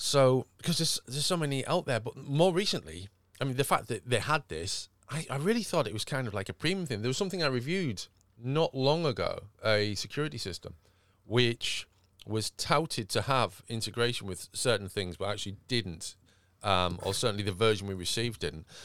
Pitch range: 100-130 Hz